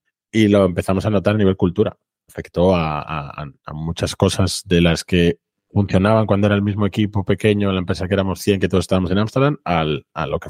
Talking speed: 215 wpm